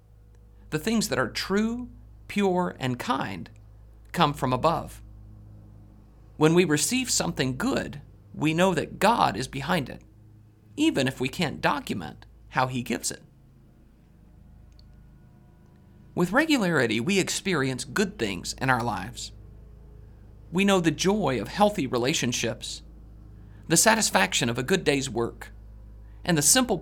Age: 40-59